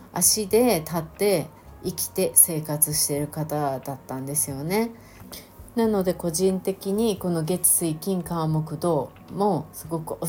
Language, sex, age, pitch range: Japanese, female, 30-49, 150-200 Hz